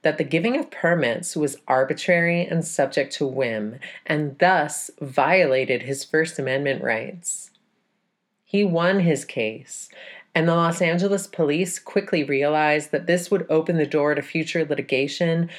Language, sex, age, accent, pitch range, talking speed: English, female, 30-49, American, 145-185 Hz, 145 wpm